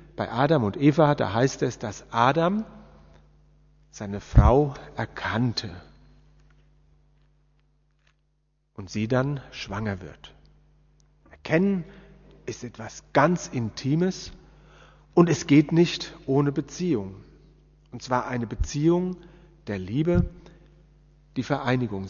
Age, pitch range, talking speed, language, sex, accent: 40-59, 115-170 Hz, 100 wpm, German, male, German